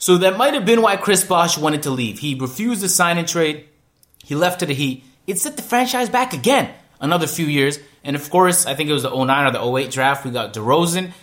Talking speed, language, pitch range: 250 wpm, English, 130-205 Hz